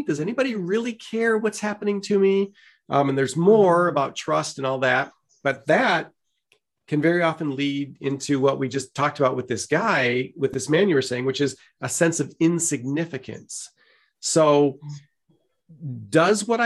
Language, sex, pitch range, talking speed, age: English, male, 135-175 Hz, 170 wpm, 40-59